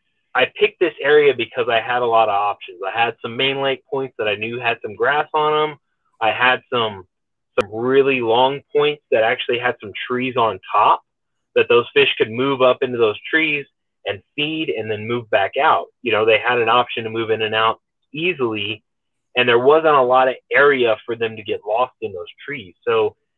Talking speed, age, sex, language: 215 wpm, 20-39, male, English